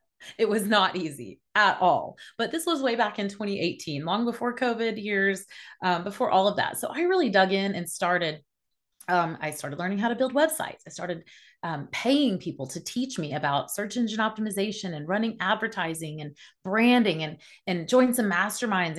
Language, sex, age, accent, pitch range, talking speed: English, female, 30-49, American, 170-220 Hz, 185 wpm